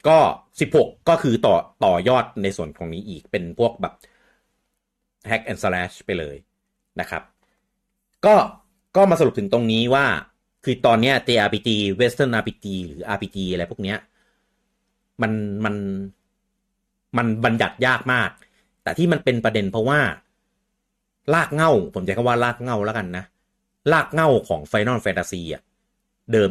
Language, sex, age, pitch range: Thai, male, 30-49, 95-125 Hz